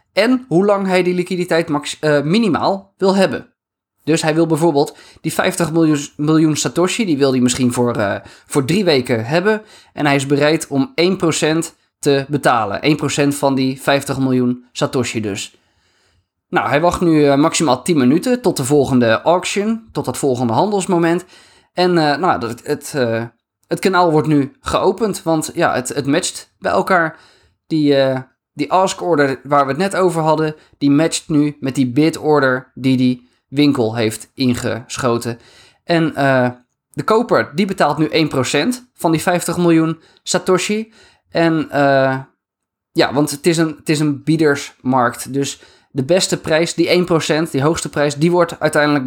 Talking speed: 170 wpm